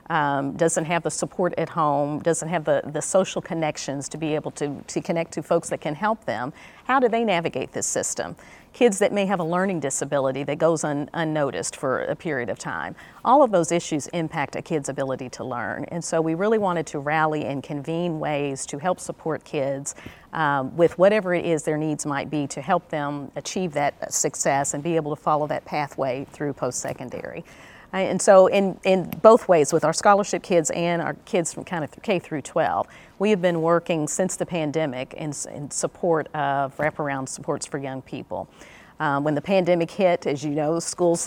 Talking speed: 200 wpm